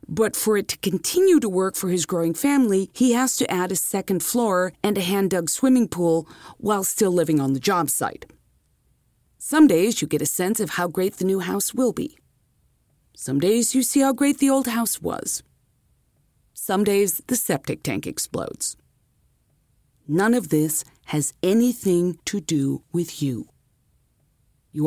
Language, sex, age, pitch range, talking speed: English, female, 40-59, 155-205 Hz, 170 wpm